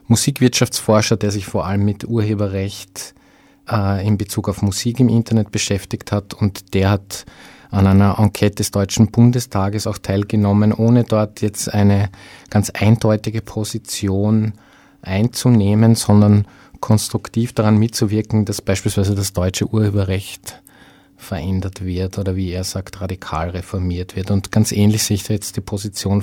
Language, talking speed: German, 140 wpm